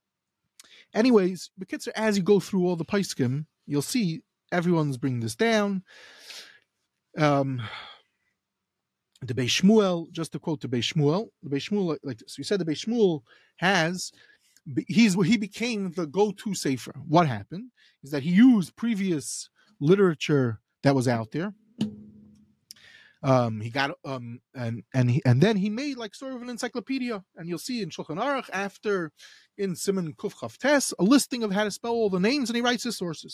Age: 30-49